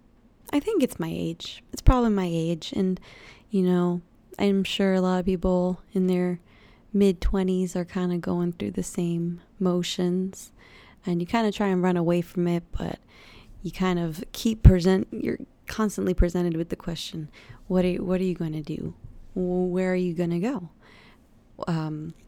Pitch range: 170-195 Hz